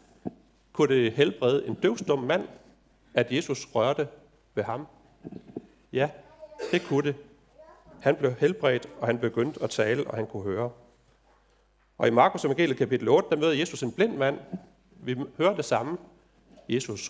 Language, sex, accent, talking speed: Danish, male, native, 155 wpm